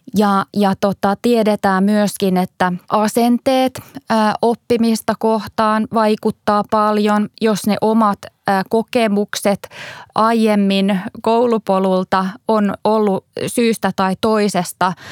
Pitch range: 185-220 Hz